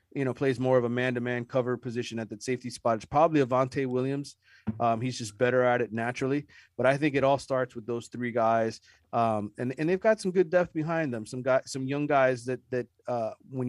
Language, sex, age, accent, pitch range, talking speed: English, male, 30-49, American, 115-130 Hz, 230 wpm